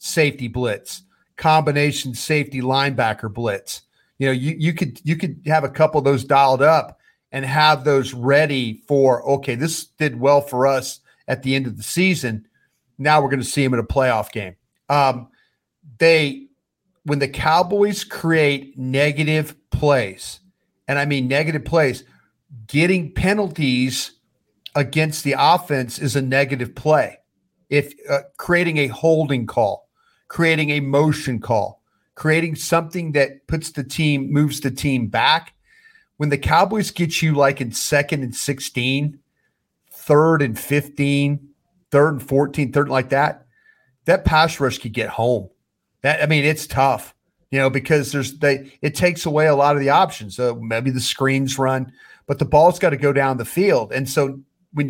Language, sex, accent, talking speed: English, male, American, 165 wpm